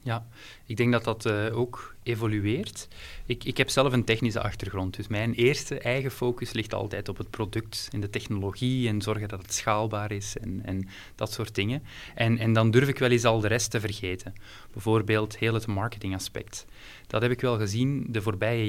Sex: male